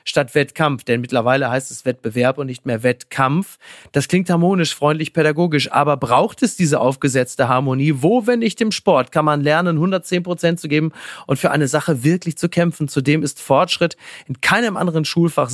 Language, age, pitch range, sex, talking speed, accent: German, 30-49, 130-165 Hz, male, 185 wpm, German